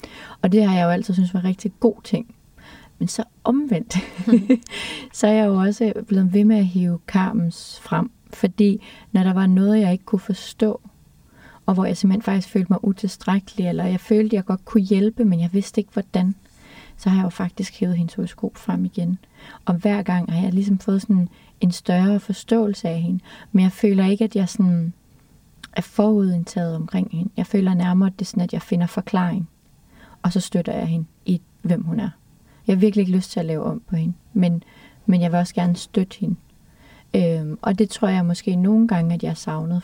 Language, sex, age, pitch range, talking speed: English, female, 30-49, 180-215 Hz, 210 wpm